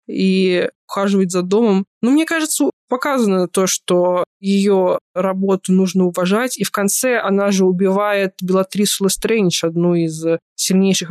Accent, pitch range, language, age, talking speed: native, 185-225 Hz, Russian, 20-39, 135 wpm